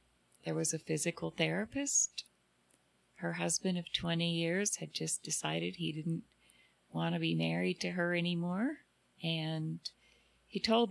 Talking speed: 140 wpm